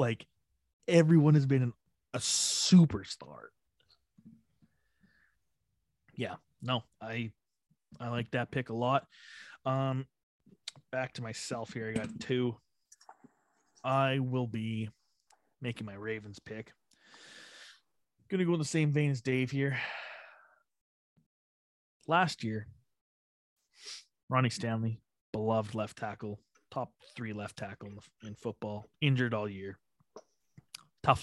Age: 20-39